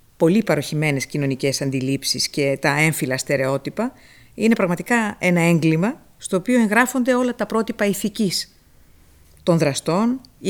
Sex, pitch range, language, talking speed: female, 145-205 Hz, Greek, 125 wpm